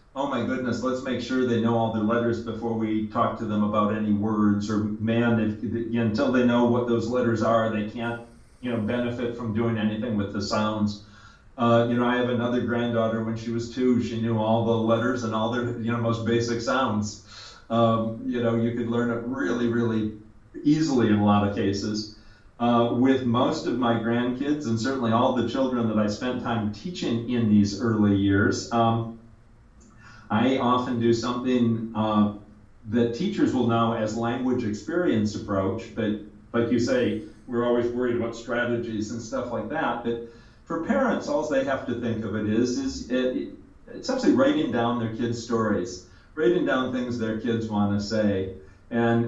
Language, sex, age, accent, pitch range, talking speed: English, male, 40-59, American, 110-120 Hz, 180 wpm